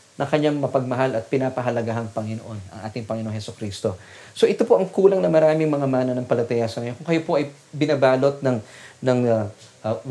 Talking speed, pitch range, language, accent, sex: 185 wpm, 115-155 Hz, English, Filipino, male